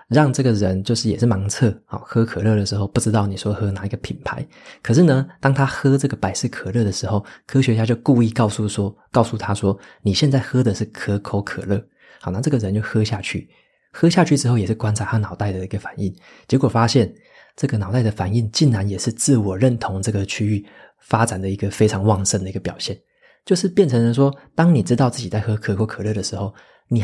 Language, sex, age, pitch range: Chinese, male, 20-39, 100-120 Hz